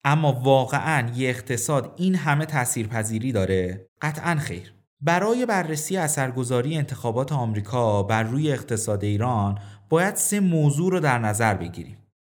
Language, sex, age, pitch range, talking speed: Persian, male, 30-49, 130-185 Hz, 125 wpm